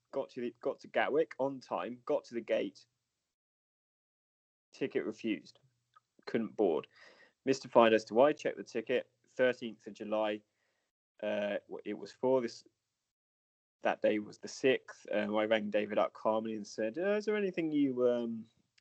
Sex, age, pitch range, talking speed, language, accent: male, 20-39, 105-125 Hz, 165 wpm, English, British